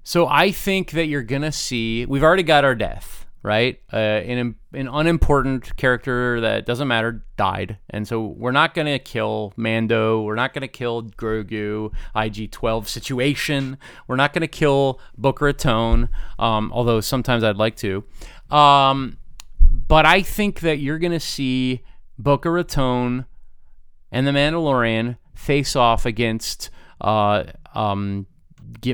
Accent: American